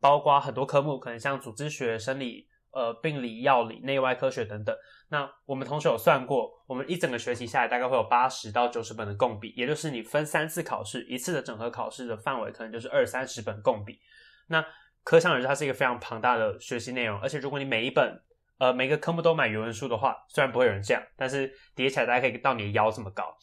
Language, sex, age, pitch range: Chinese, male, 20-39, 120-155 Hz